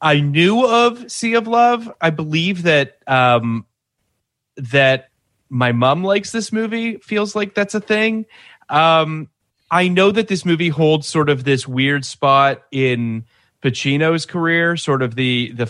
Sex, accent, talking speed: male, American, 150 wpm